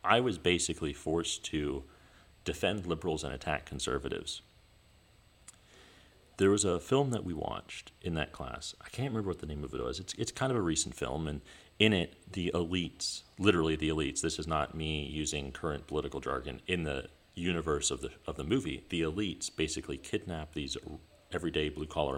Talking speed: 180 wpm